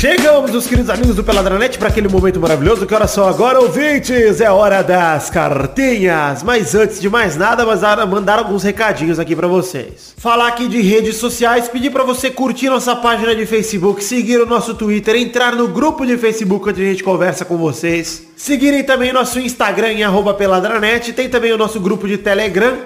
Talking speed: 195 wpm